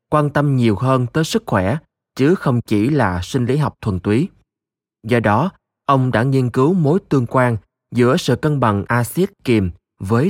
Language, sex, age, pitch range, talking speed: Vietnamese, male, 20-39, 105-130 Hz, 185 wpm